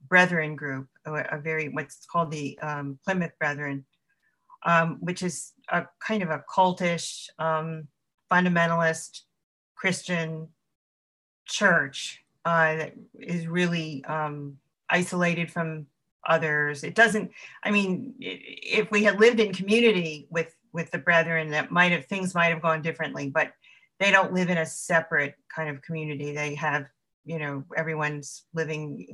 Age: 40-59